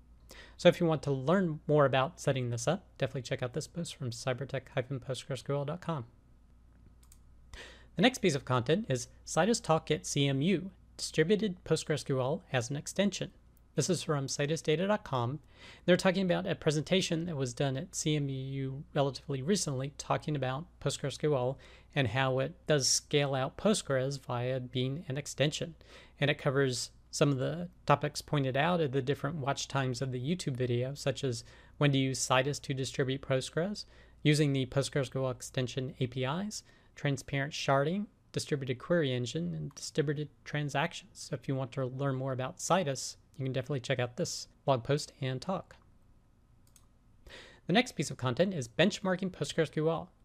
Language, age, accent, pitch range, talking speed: English, 40-59, American, 130-160 Hz, 155 wpm